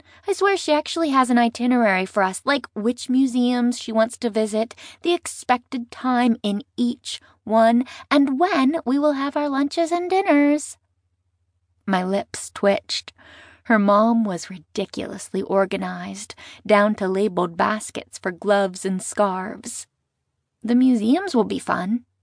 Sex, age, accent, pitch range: female, 20-39, American, 195-260 Hz